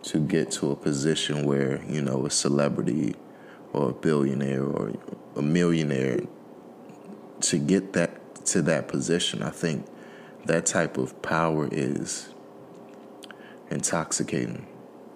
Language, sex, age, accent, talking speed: English, male, 30-49, American, 120 wpm